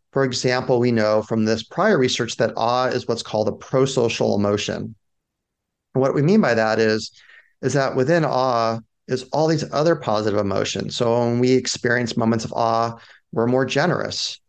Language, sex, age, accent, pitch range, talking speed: English, male, 30-49, American, 110-130 Hz, 180 wpm